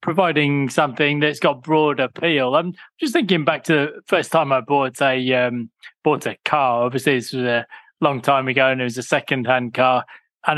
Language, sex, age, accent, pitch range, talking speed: English, male, 20-39, British, 125-150 Hz, 205 wpm